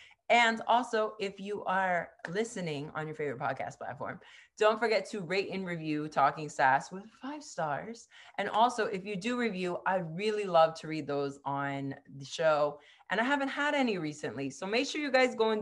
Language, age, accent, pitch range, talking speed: English, 20-39, American, 150-205 Hz, 190 wpm